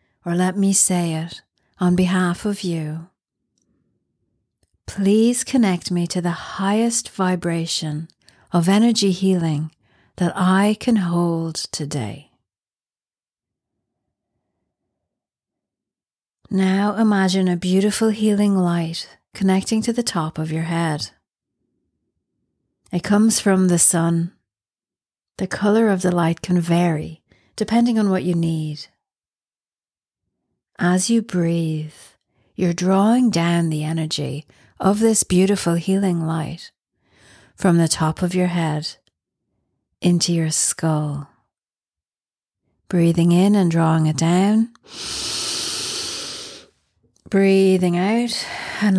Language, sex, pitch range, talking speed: English, female, 160-195 Hz, 105 wpm